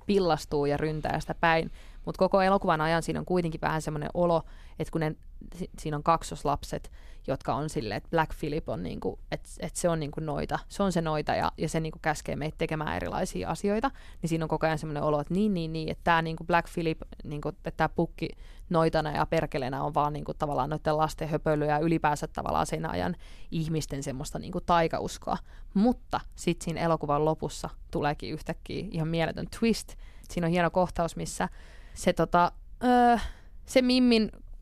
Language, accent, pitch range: English, Finnish, 155-180 Hz